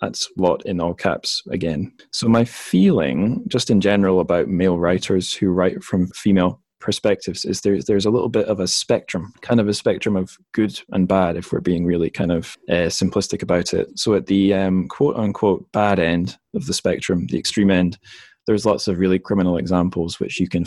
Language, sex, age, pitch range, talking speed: English, male, 20-39, 90-100 Hz, 205 wpm